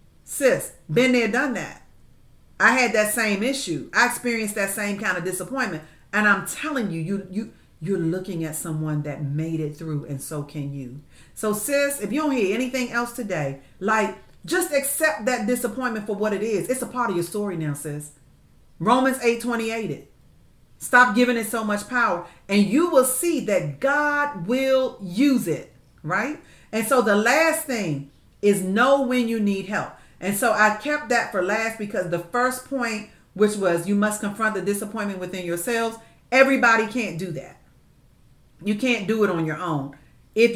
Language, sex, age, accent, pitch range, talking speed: English, female, 40-59, American, 170-240 Hz, 185 wpm